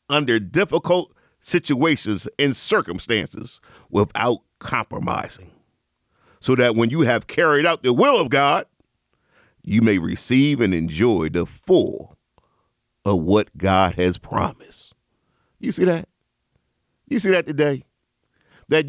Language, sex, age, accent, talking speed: English, male, 40-59, American, 120 wpm